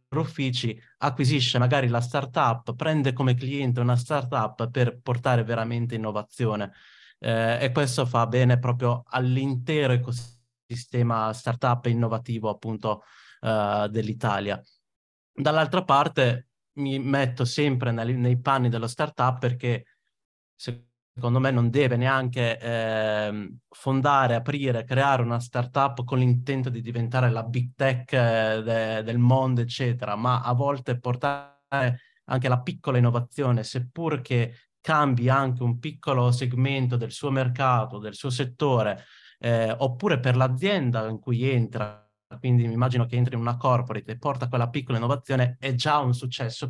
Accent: native